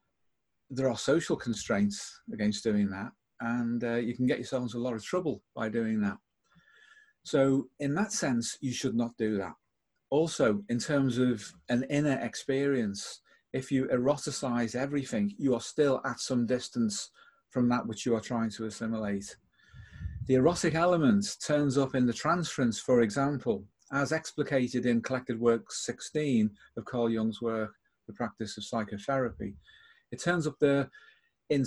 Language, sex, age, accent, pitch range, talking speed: English, male, 40-59, British, 115-150 Hz, 160 wpm